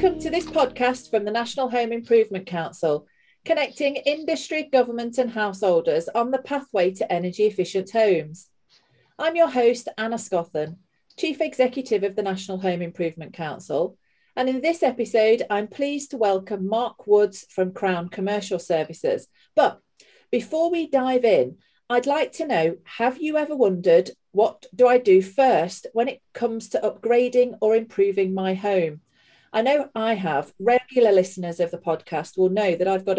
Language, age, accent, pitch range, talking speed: English, 40-59, British, 185-250 Hz, 165 wpm